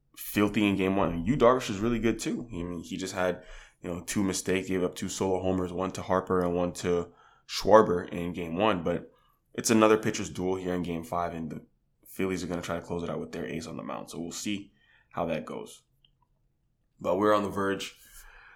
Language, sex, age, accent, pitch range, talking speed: English, male, 20-39, American, 90-105 Hz, 230 wpm